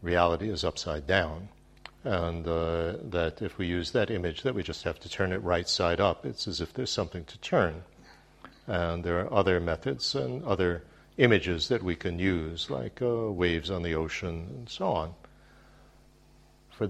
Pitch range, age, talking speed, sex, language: 80-100 Hz, 60-79, 180 wpm, male, English